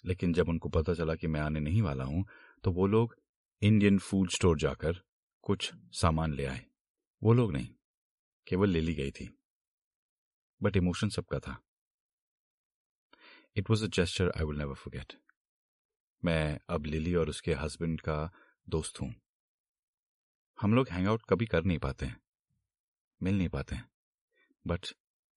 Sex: male